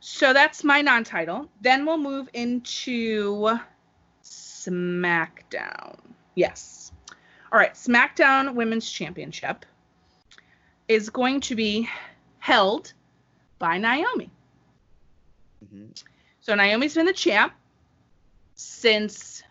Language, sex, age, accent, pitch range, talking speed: English, female, 30-49, American, 185-260 Hz, 85 wpm